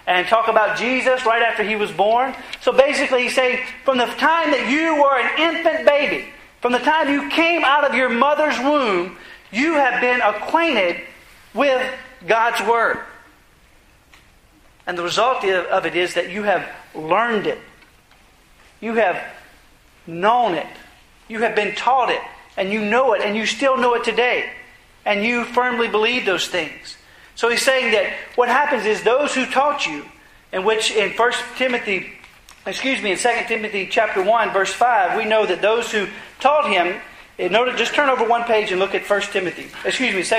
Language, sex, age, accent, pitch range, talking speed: English, male, 40-59, American, 210-260 Hz, 175 wpm